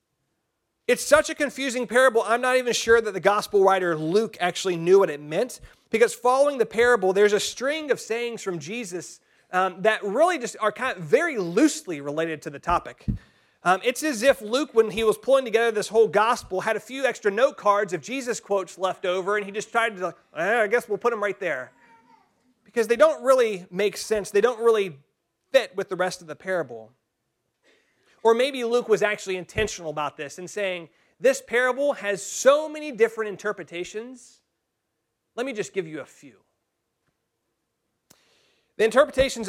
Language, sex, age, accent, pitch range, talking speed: English, male, 30-49, American, 185-235 Hz, 185 wpm